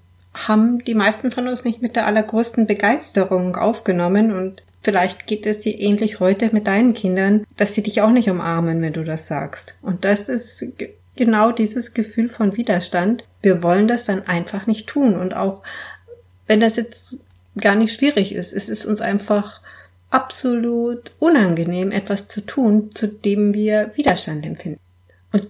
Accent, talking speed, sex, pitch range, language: German, 165 wpm, female, 185-225 Hz, German